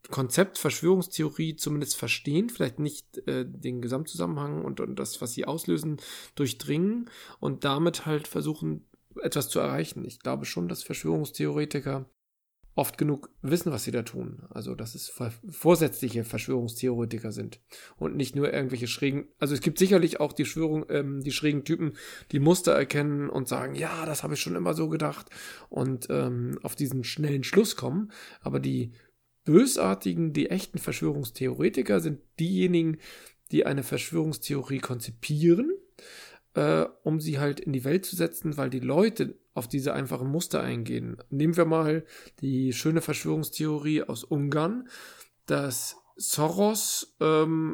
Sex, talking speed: male, 150 wpm